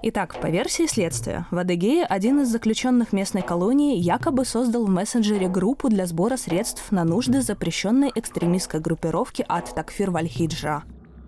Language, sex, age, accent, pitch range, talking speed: Russian, female, 20-39, native, 170-240 Hz, 140 wpm